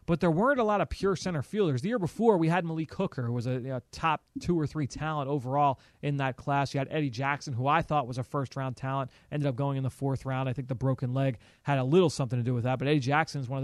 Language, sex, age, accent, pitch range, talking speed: English, male, 30-49, American, 130-165 Hz, 285 wpm